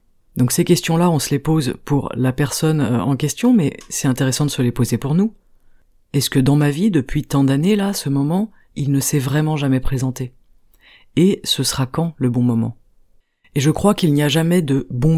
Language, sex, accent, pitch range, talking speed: French, female, French, 130-160 Hz, 215 wpm